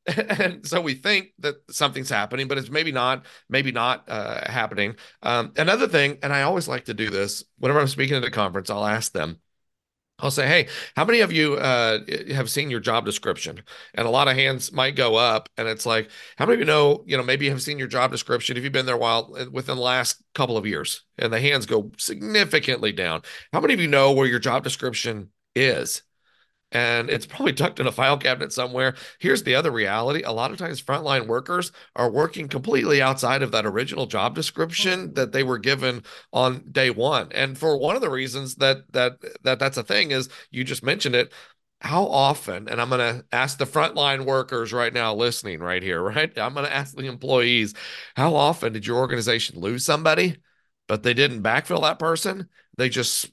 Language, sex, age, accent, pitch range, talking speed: English, male, 40-59, American, 120-140 Hz, 215 wpm